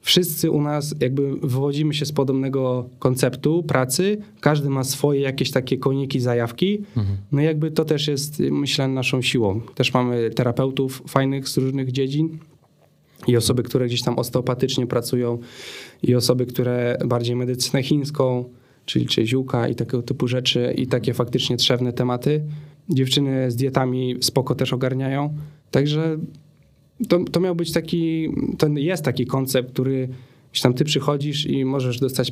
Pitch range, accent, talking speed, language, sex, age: 120-145 Hz, native, 150 wpm, Polish, male, 20-39